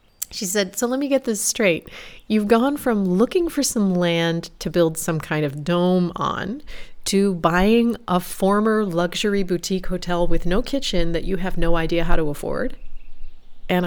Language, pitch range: English, 170-225 Hz